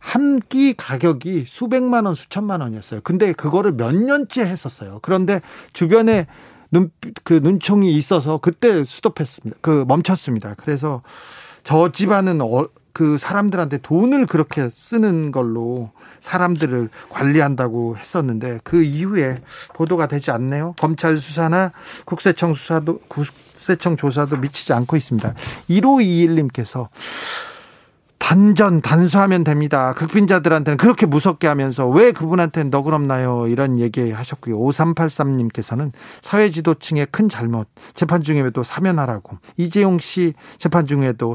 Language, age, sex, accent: Korean, 40-59, male, native